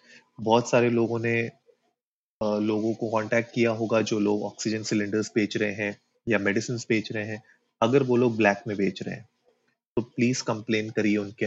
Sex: male